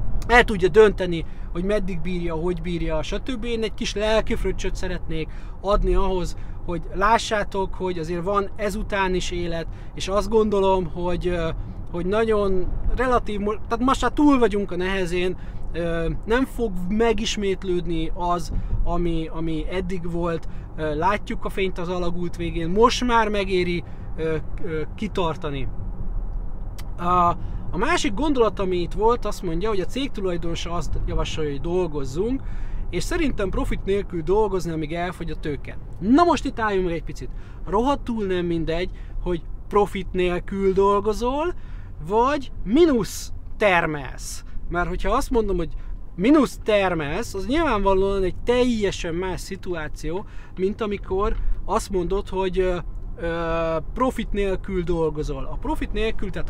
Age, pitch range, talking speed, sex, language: 30-49, 165-210 Hz, 130 wpm, male, Hungarian